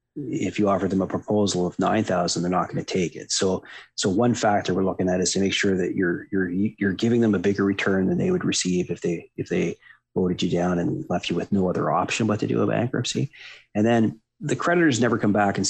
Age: 30-49